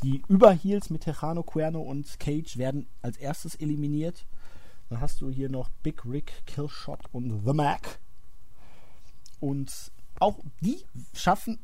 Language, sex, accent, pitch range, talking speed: German, male, German, 125-180 Hz, 135 wpm